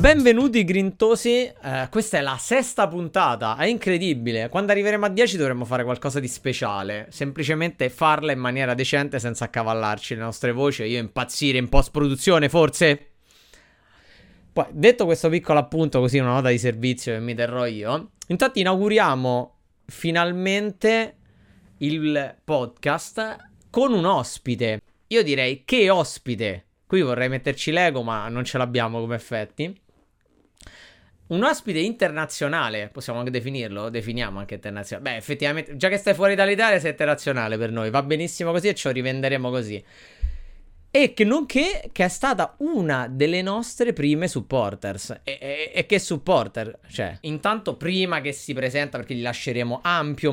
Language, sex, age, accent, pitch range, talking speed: Italian, male, 30-49, native, 125-190 Hz, 145 wpm